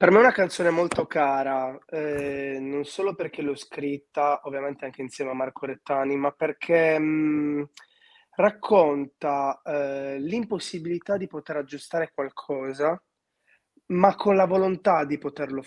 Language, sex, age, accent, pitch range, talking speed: Italian, male, 20-39, native, 140-170 Hz, 130 wpm